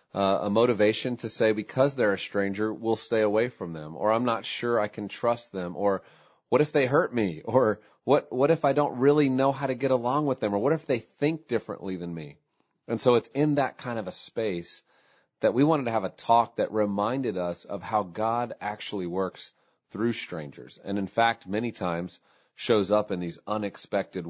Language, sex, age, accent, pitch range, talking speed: English, male, 40-59, American, 95-115 Hz, 210 wpm